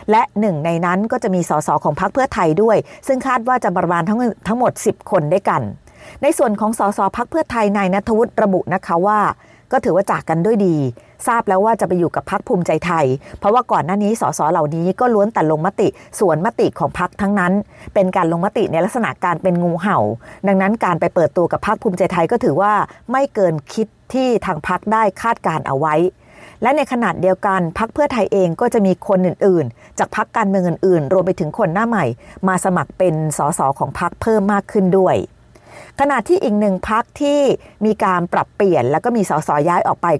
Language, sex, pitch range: Thai, female, 175-220 Hz